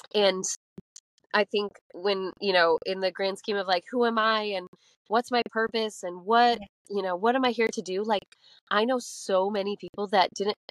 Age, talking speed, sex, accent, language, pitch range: 20-39, 205 wpm, female, American, English, 195-245 Hz